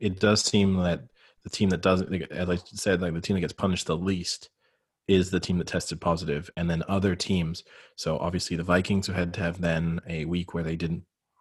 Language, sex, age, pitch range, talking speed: English, male, 20-39, 90-100 Hz, 225 wpm